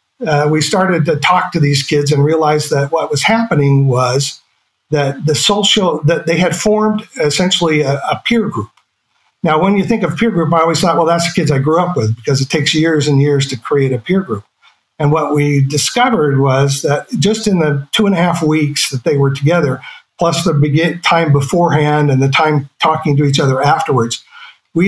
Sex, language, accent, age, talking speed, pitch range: male, English, American, 50-69, 210 wpm, 145-170 Hz